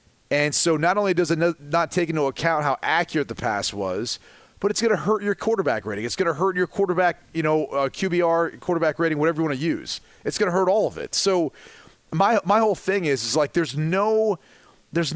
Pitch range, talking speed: 140-175 Hz, 220 wpm